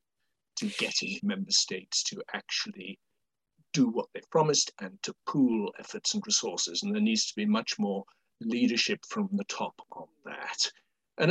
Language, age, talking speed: English, 60-79, 160 wpm